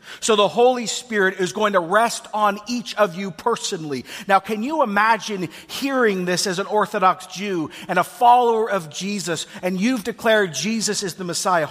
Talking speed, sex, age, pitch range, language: 180 wpm, male, 40-59, 195-235 Hz, English